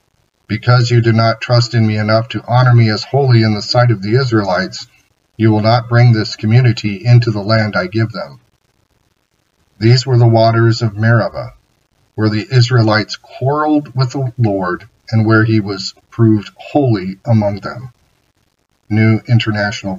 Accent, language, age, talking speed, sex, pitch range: American, English, 40-59, 160 wpm, male, 110-125 Hz